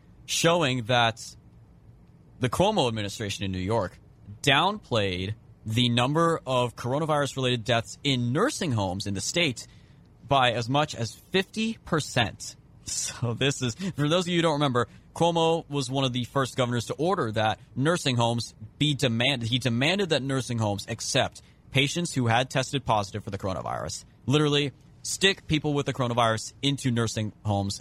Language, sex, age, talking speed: English, male, 30-49, 155 wpm